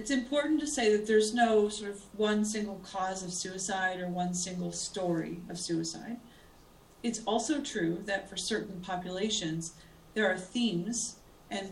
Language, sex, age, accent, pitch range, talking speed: English, female, 40-59, American, 175-210 Hz, 160 wpm